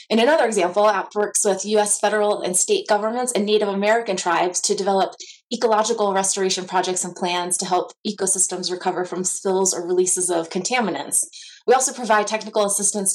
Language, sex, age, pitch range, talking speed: English, female, 20-39, 190-225 Hz, 170 wpm